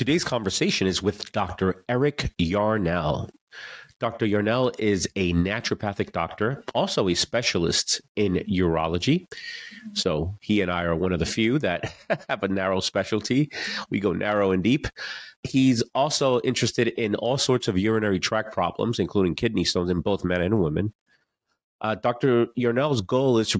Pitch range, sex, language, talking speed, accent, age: 95-125 Hz, male, English, 155 wpm, American, 30-49